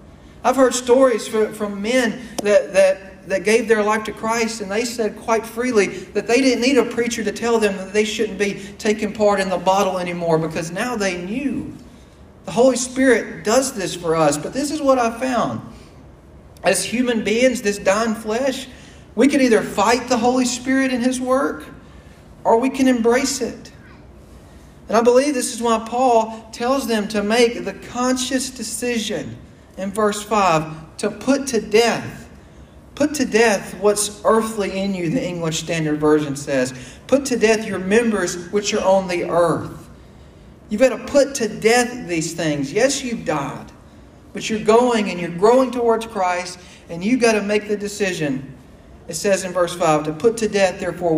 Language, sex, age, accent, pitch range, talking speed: English, male, 40-59, American, 180-240 Hz, 180 wpm